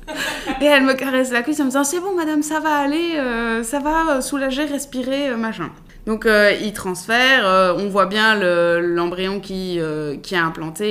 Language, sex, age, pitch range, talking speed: English, female, 20-39, 195-255 Hz, 205 wpm